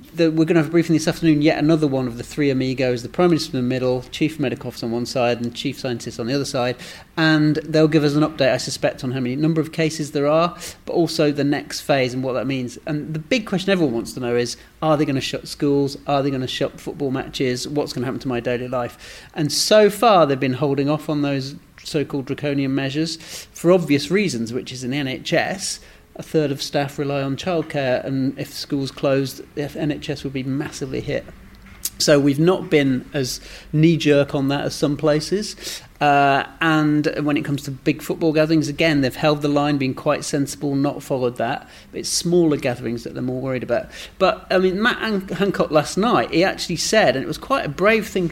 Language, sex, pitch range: English, male, 130-160 Hz